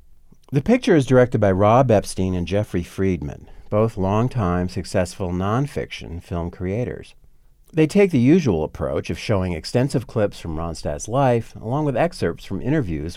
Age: 50-69